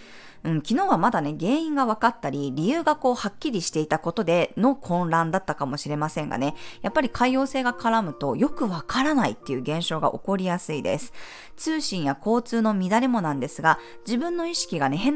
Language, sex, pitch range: Japanese, female, 160-255 Hz